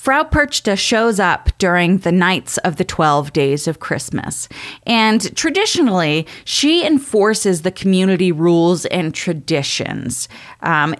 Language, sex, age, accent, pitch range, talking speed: English, female, 30-49, American, 160-205 Hz, 125 wpm